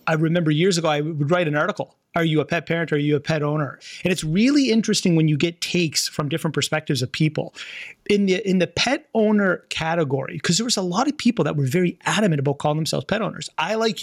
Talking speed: 250 wpm